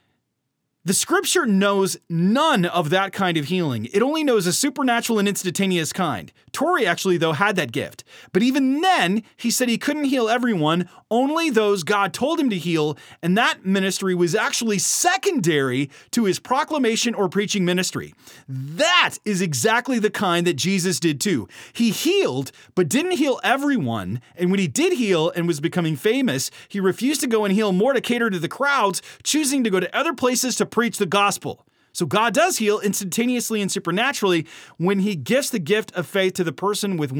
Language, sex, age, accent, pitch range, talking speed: English, male, 30-49, American, 170-235 Hz, 185 wpm